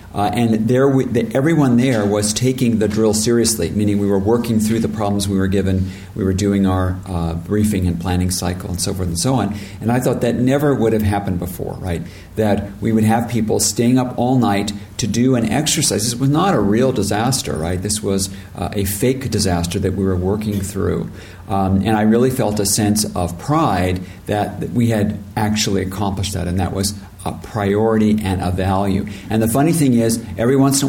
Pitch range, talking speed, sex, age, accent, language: 95-115 Hz, 215 wpm, male, 50-69, American, English